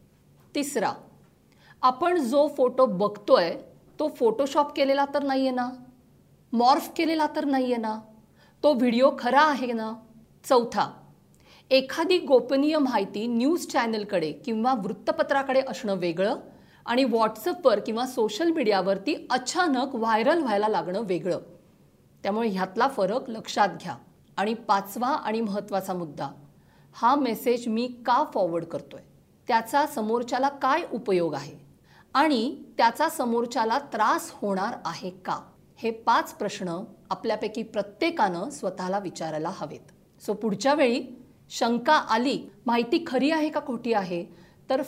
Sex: female